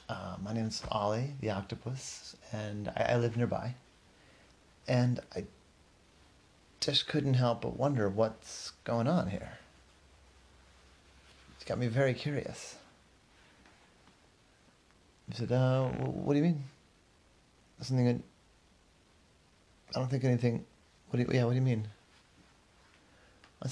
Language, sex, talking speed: English, male, 120 wpm